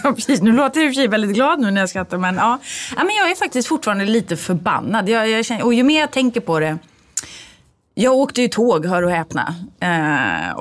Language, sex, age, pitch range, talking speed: Swedish, female, 30-49, 170-235 Hz, 215 wpm